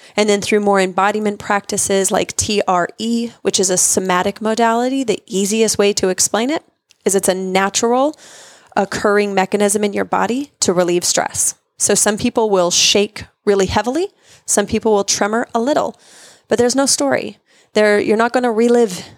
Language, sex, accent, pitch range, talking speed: English, female, American, 195-240 Hz, 170 wpm